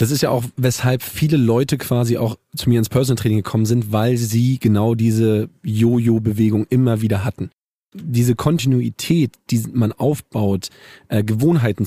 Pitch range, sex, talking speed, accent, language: 105-125 Hz, male, 165 wpm, German, German